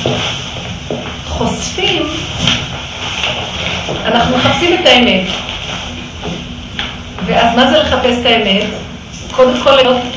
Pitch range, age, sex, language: 205-270 Hz, 40-59, female, Hebrew